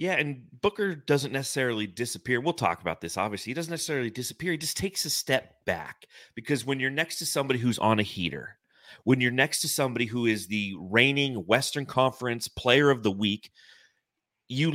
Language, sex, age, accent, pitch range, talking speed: English, male, 30-49, American, 105-145 Hz, 190 wpm